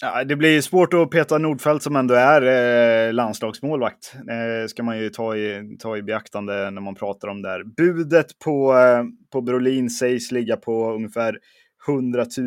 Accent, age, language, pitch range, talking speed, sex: native, 20-39, Swedish, 115-130 Hz, 185 wpm, male